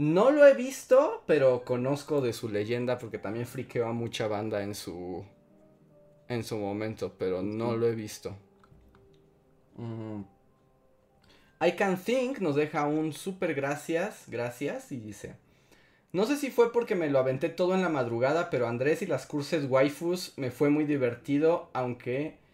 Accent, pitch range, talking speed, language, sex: Mexican, 115-170 Hz, 160 wpm, Spanish, male